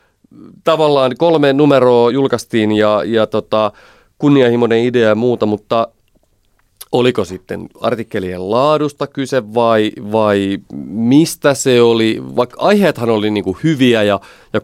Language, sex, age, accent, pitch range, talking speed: Finnish, male, 30-49, native, 100-125 Hz, 120 wpm